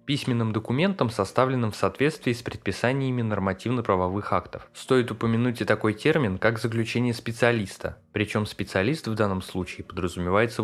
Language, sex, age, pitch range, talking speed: Russian, male, 20-39, 95-120 Hz, 130 wpm